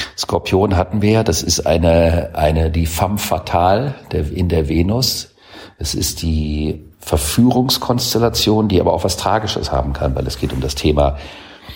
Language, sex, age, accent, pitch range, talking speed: German, male, 50-69, German, 75-100 Hz, 165 wpm